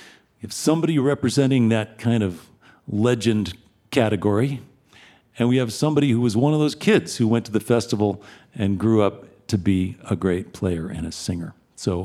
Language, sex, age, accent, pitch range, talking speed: English, male, 50-69, American, 100-125 Hz, 175 wpm